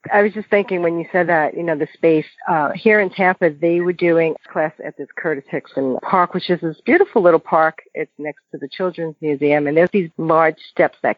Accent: American